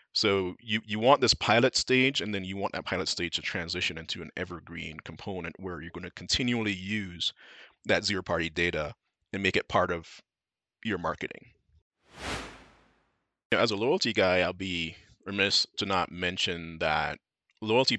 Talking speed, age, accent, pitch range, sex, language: 160 wpm, 30-49, American, 85-100 Hz, male, English